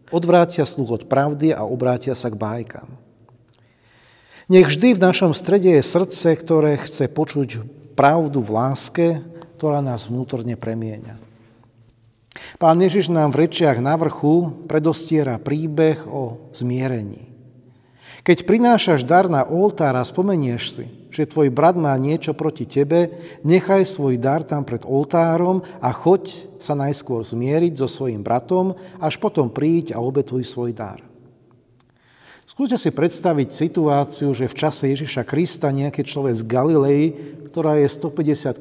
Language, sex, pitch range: Slovak, male, 125-165 Hz